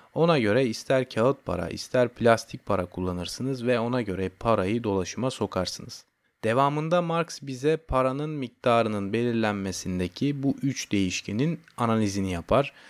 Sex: male